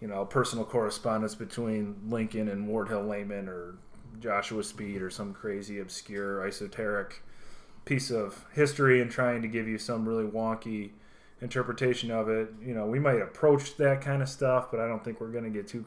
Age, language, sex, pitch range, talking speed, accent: 30-49, English, male, 100-120 Hz, 190 wpm, American